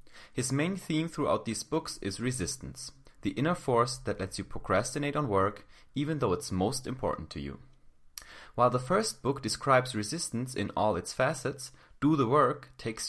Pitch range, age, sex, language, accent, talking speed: 95-140 Hz, 30-49, male, English, German, 175 wpm